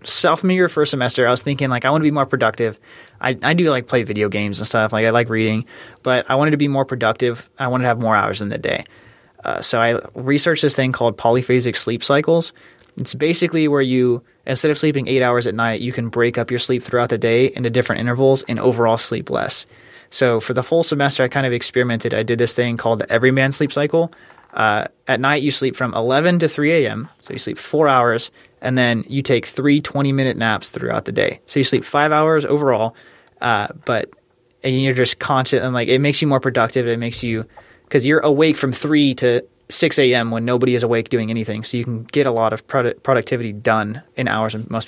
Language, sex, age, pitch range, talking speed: English, male, 20-39, 115-140 Hz, 230 wpm